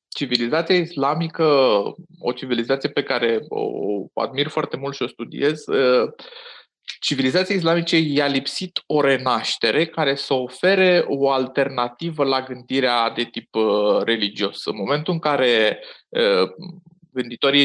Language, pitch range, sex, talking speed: Romanian, 120-155 Hz, male, 115 wpm